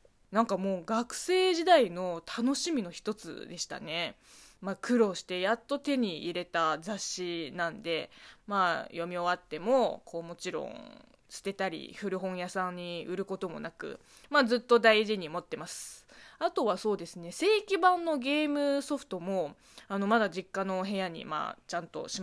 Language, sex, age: Japanese, female, 20-39